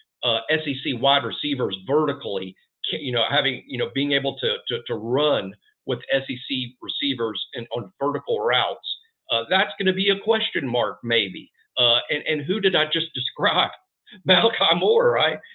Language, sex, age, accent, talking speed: English, male, 50-69, American, 165 wpm